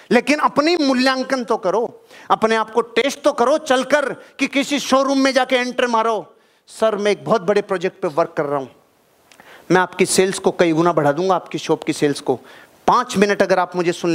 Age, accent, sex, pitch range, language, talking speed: 30-49, native, male, 180-235 Hz, Hindi, 210 wpm